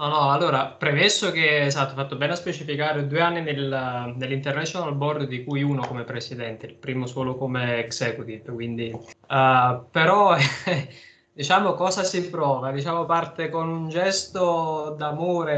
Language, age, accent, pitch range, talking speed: Italian, 20-39, native, 130-155 Hz, 155 wpm